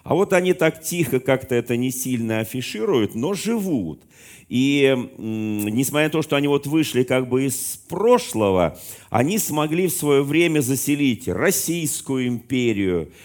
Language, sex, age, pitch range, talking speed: Russian, male, 40-59, 115-155 Hz, 150 wpm